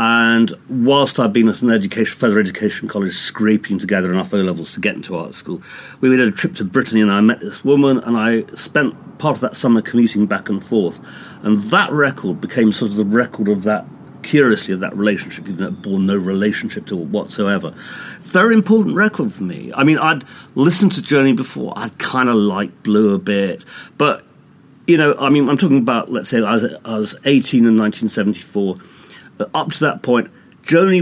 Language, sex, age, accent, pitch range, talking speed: English, male, 40-59, British, 105-140 Hz, 205 wpm